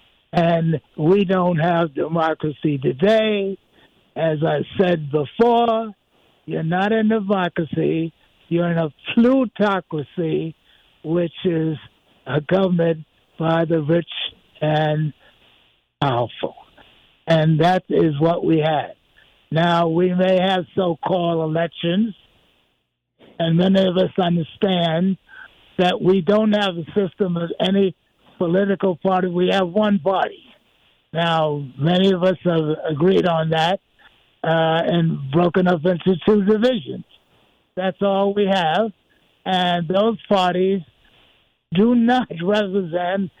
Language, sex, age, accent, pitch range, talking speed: English, male, 60-79, American, 165-200 Hz, 115 wpm